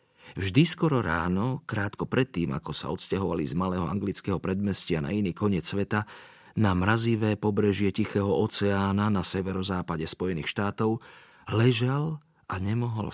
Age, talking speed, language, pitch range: 40-59, 130 wpm, Slovak, 90-115 Hz